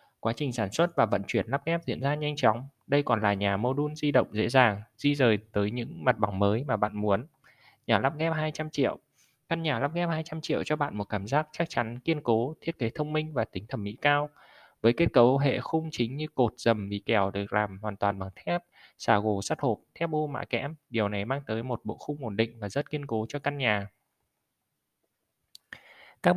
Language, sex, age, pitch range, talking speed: Vietnamese, male, 20-39, 110-150 Hz, 235 wpm